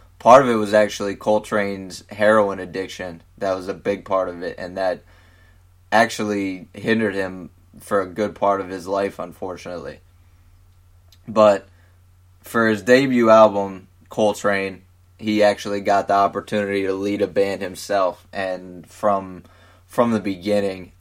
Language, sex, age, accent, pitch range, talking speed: English, male, 20-39, American, 90-105 Hz, 140 wpm